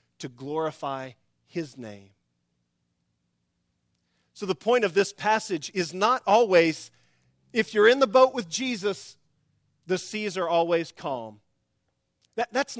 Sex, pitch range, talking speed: male, 150-220 Hz, 120 wpm